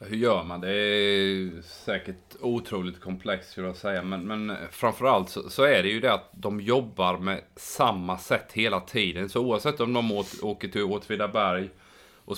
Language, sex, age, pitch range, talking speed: Swedish, male, 30-49, 95-110 Hz, 185 wpm